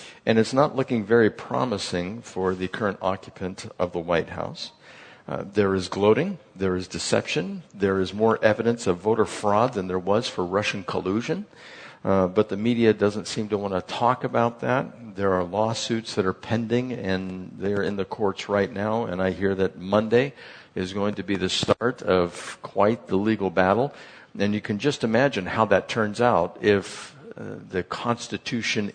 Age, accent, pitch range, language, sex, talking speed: 50-69, American, 95-110 Hz, English, male, 185 wpm